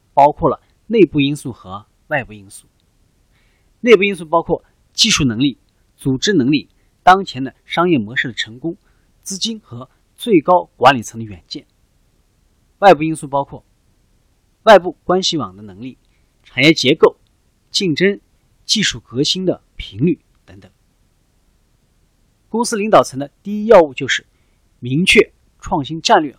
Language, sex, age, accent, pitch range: Chinese, male, 30-49, native, 115-180 Hz